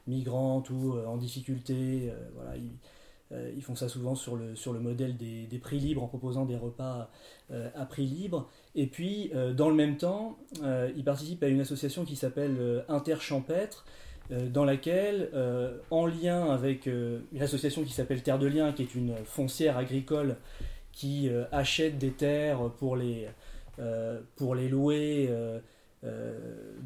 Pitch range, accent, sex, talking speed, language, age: 125-145 Hz, French, male, 150 wpm, French, 30-49